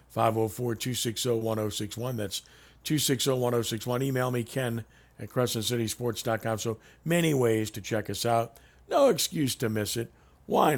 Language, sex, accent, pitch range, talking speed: English, male, American, 100-120 Hz, 110 wpm